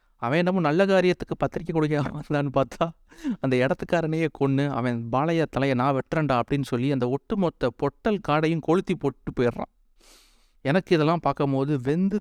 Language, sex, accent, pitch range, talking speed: Tamil, male, native, 125-165 Hz, 150 wpm